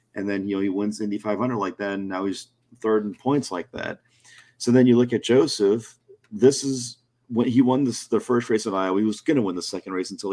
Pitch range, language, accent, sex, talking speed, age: 105-120 Hz, English, American, male, 255 wpm, 30-49